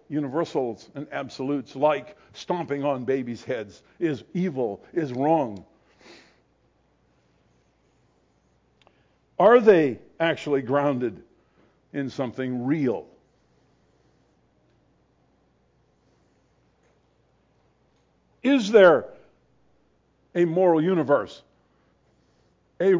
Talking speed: 65 wpm